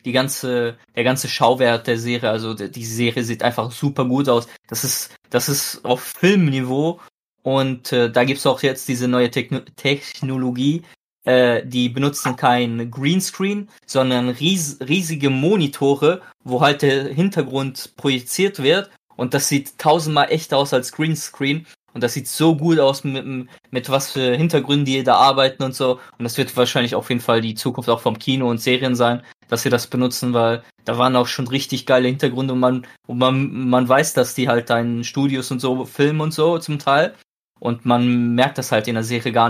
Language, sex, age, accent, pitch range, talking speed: German, male, 20-39, German, 120-145 Hz, 190 wpm